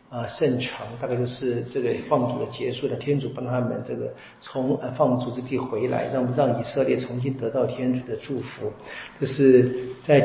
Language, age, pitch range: Chinese, 50-69, 125-145 Hz